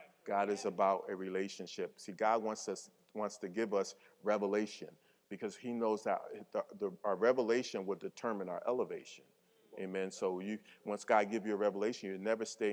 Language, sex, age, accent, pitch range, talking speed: English, male, 40-59, American, 100-120 Hz, 180 wpm